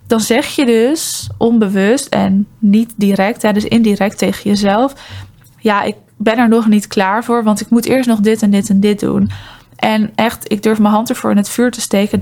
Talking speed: 210 wpm